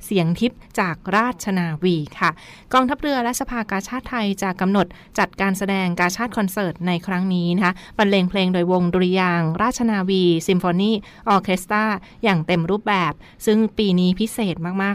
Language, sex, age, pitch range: Thai, female, 20-39, 175-210 Hz